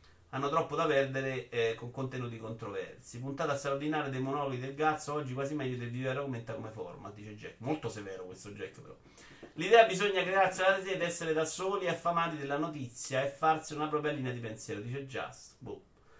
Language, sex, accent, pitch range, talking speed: Italian, male, native, 125-160 Hz, 195 wpm